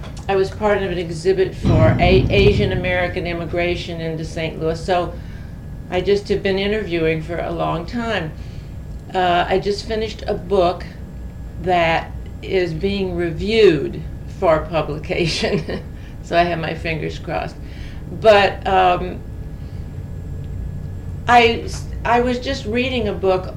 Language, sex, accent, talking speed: English, female, American, 130 wpm